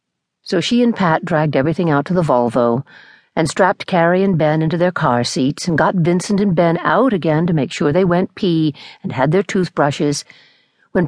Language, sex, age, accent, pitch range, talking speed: English, female, 50-69, American, 140-185 Hz, 200 wpm